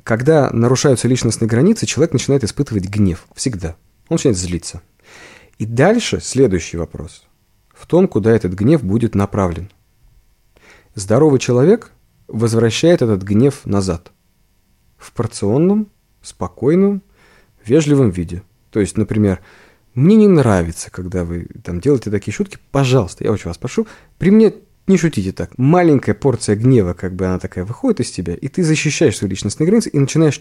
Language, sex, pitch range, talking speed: Russian, male, 100-135 Hz, 145 wpm